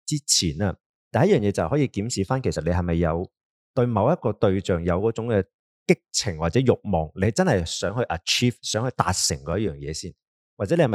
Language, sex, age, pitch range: Chinese, male, 20-39, 90-125 Hz